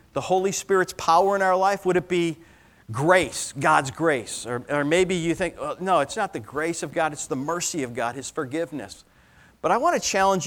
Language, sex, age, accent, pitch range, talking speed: English, male, 50-69, American, 130-175 Hz, 205 wpm